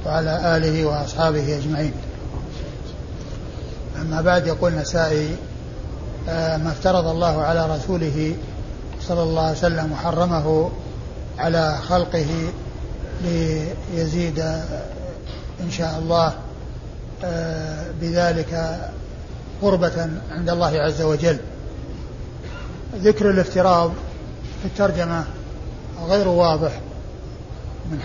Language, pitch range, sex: Arabic, 160-180 Hz, male